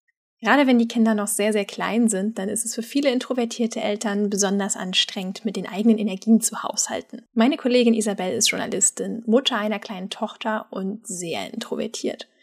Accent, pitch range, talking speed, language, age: German, 210-240 Hz, 175 wpm, German, 10-29